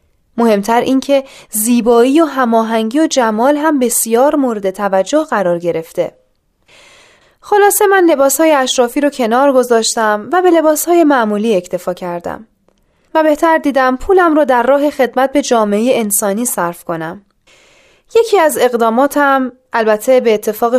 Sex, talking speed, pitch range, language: female, 135 wpm, 210-290 Hz, Persian